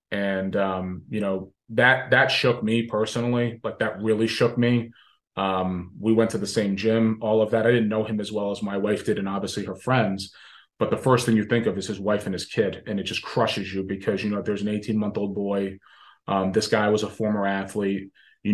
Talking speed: 235 wpm